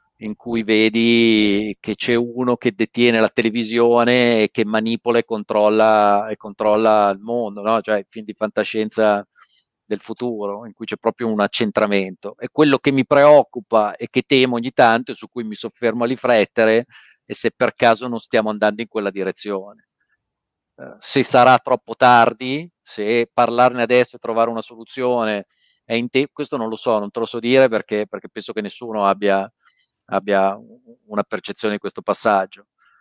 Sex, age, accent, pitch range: male, 40-59, native, 110-125 Hz